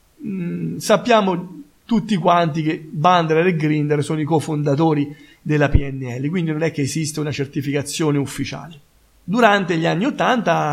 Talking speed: 135 wpm